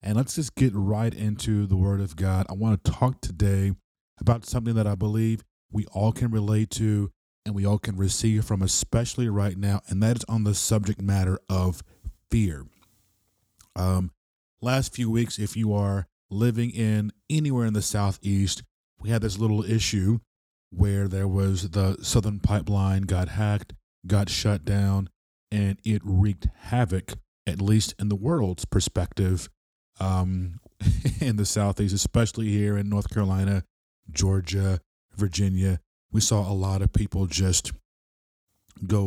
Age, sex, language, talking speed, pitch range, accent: 30-49, male, English, 155 wpm, 95-110 Hz, American